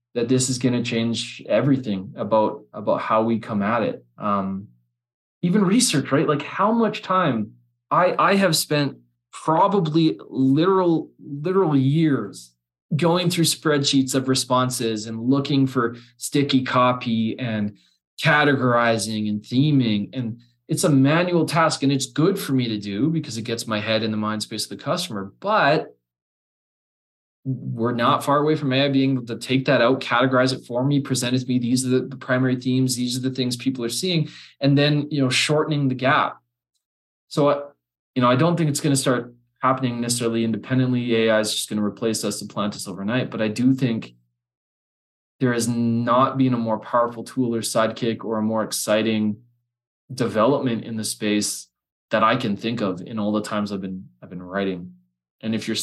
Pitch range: 110-135 Hz